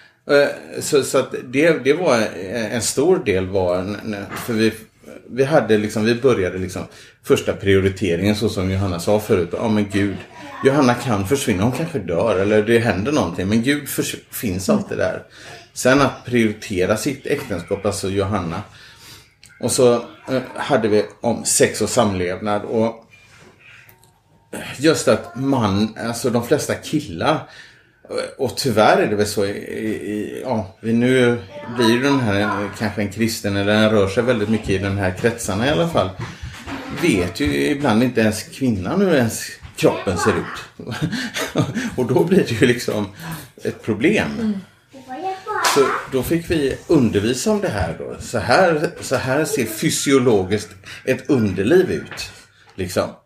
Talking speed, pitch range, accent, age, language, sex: 155 wpm, 105-135 Hz, Norwegian, 30-49, Swedish, male